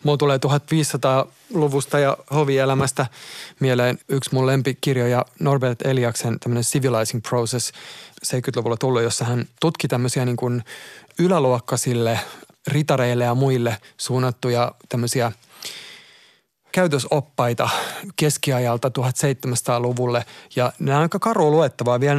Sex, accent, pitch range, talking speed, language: male, native, 120-145 Hz, 100 wpm, Finnish